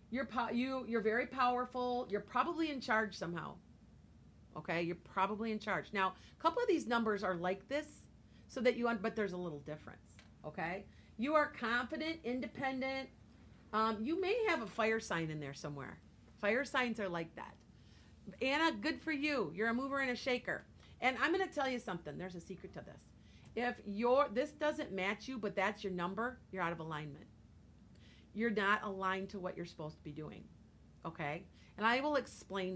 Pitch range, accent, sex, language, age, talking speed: 185-255 Hz, American, female, English, 40-59, 190 wpm